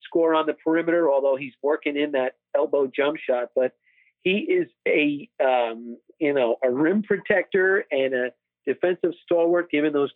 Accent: American